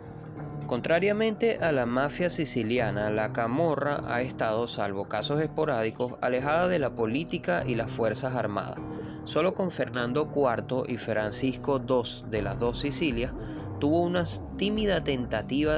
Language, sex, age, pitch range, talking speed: Spanish, male, 20-39, 110-145 Hz, 135 wpm